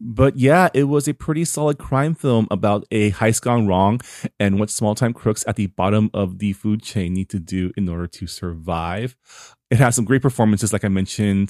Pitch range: 100-135 Hz